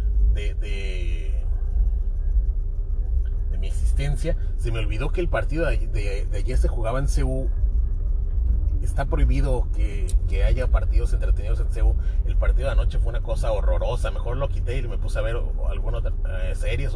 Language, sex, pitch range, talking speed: Spanish, male, 70-95 Hz, 170 wpm